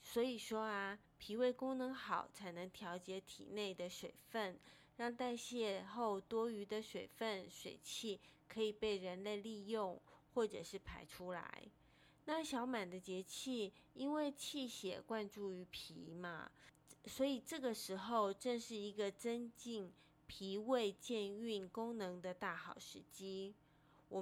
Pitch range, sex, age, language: 185-230 Hz, female, 20-39, Chinese